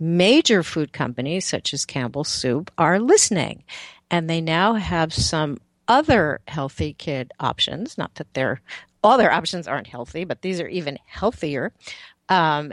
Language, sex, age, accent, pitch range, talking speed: English, female, 50-69, American, 140-175 Hz, 145 wpm